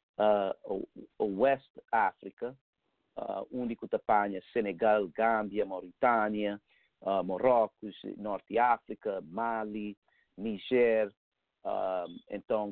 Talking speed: 70 wpm